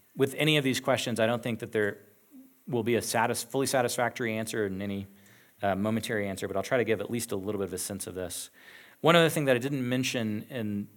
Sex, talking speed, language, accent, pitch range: male, 240 wpm, English, American, 105-130 Hz